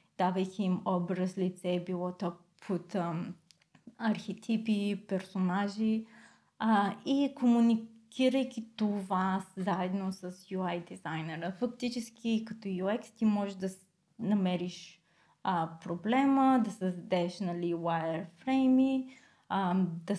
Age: 20-39